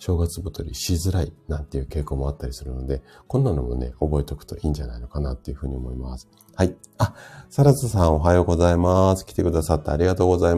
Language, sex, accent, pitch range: Japanese, male, native, 75-90 Hz